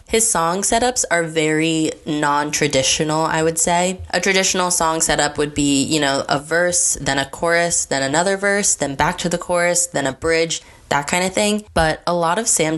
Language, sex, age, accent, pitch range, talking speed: English, female, 20-39, American, 145-170 Hz, 195 wpm